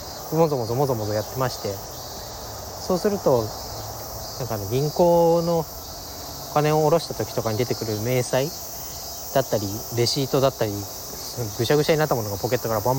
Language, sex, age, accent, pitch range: Japanese, male, 20-39, native, 110-140 Hz